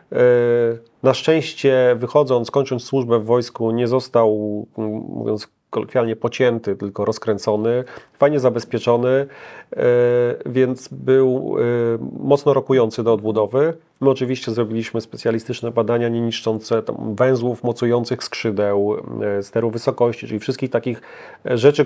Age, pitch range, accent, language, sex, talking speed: 40-59, 115-135 Hz, native, Polish, male, 100 wpm